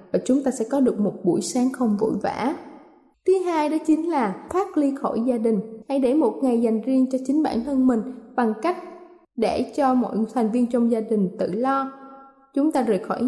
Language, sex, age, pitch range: Thai, female, 20-39, 220-285 Hz